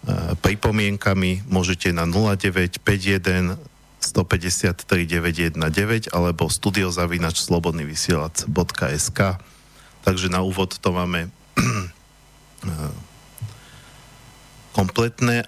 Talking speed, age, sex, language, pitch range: 65 wpm, 50-69, male, Slovak, 90-110 Hz